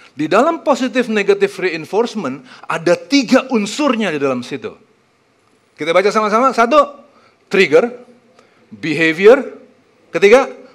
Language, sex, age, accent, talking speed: Indonesian, male, 40-59, native, 95 wpm